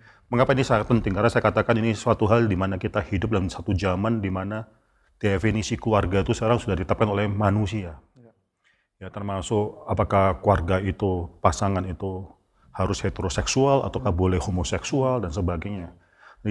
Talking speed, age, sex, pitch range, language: 155 wpm, 40-59, male, 95-115 Hz, Indonesian